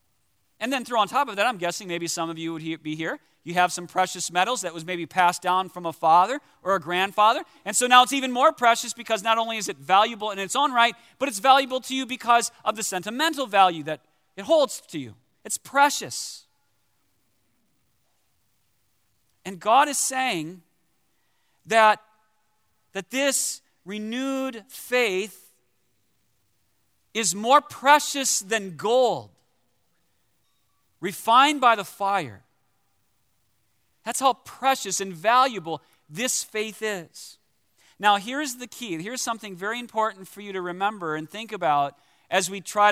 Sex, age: male, 40-59